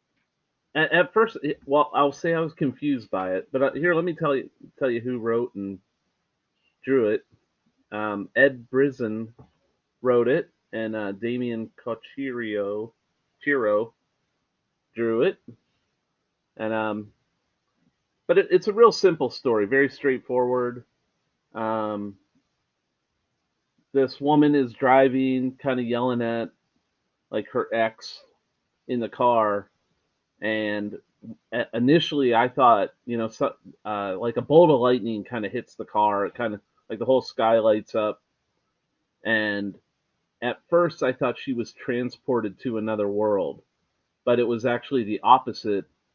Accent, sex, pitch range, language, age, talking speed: American, male, 105-130 Hz, English, 30-49, 135 wpm